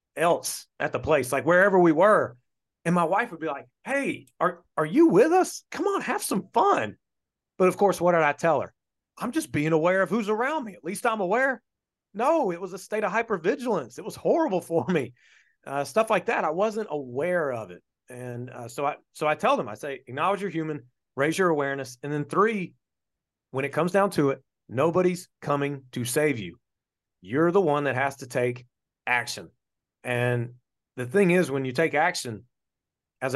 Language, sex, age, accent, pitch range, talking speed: English, male, 30-49, American, 135-185 Hz, 205 wpm